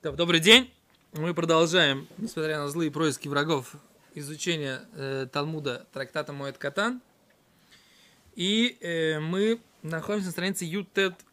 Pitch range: 155-195 Hz